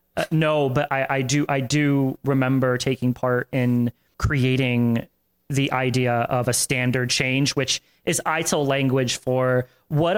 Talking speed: 145 wpm